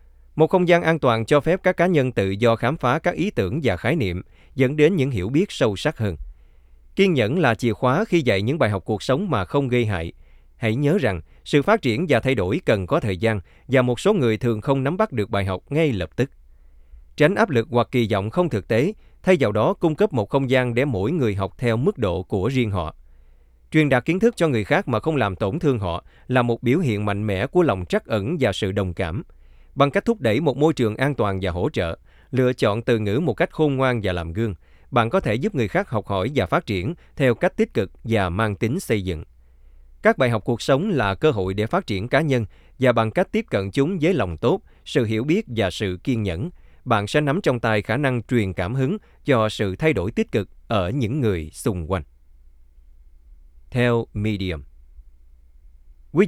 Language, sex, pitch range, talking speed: Vietnamese, male, 90-135 Hz, 235 wpm